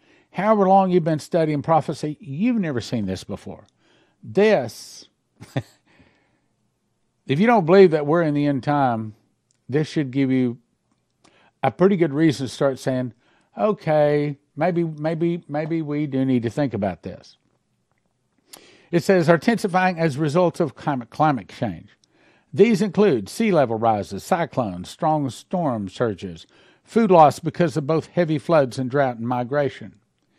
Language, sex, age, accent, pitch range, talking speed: English, male, 50-69, American, 130-190 Hz, 145 wpm